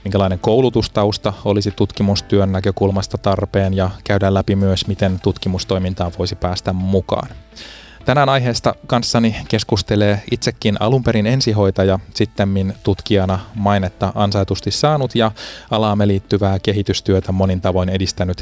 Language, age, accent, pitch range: Finnish, 20-39, native, 95-110 Hz